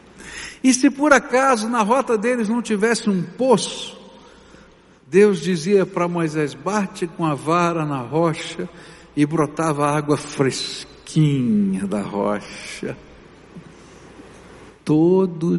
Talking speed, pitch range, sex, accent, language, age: 110 wpm, 170-220 Hz, male, Brazilian, Portuguese, 60-79